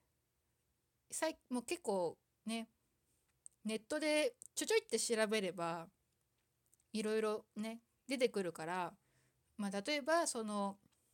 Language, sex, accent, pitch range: Japanese, female, native, 190-240 Hz